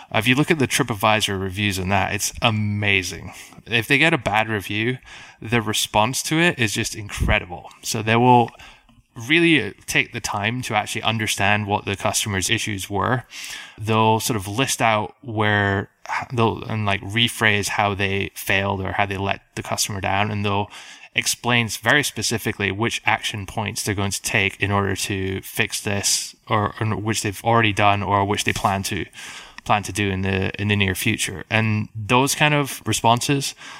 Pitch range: 100-120 Hz